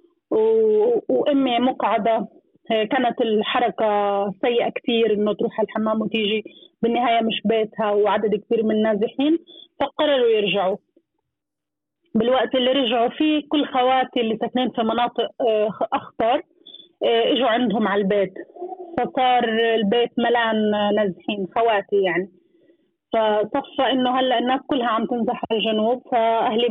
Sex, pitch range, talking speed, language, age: female, 220-275 Hz, 115 wpm, Arabic, 30-49